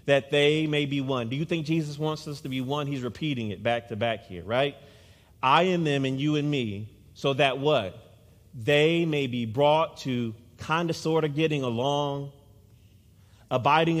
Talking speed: 190 wpm